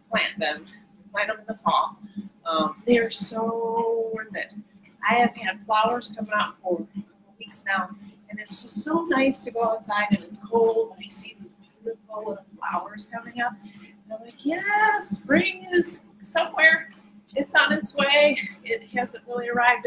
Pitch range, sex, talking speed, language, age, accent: 195-225 Hz, female, 180 wpm, English, 30-49, American